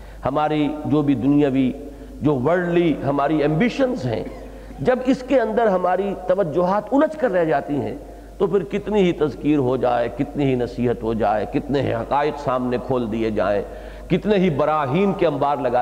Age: 50-69